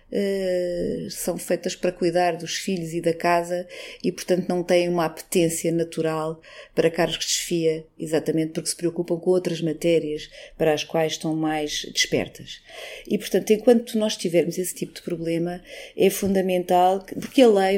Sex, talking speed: female, 160 wpm